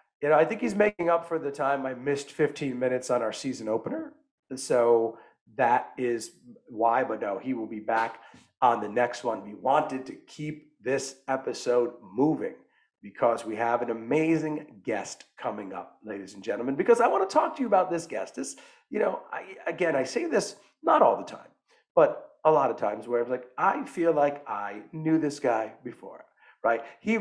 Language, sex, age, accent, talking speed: English, male, 40-59, American, 195 wpm